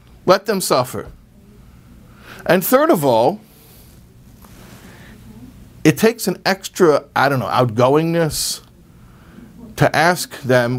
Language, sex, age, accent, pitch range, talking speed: English, male, 50-69, American, 115-180 Hz, 90 wpm